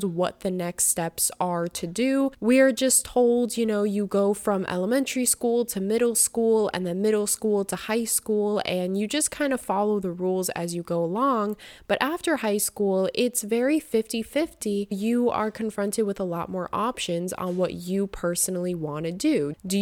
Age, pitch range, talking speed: 20-39, 185-240 Hz, 190 wpm